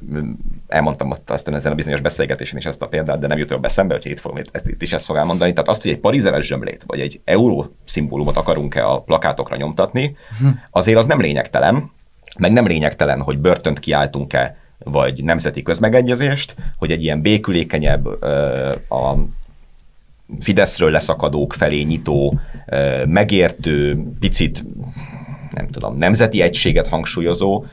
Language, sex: Hungarian, male